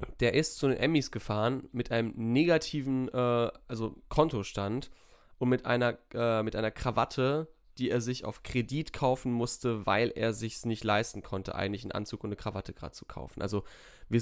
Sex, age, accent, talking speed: male, 10-29, German, 185 wpm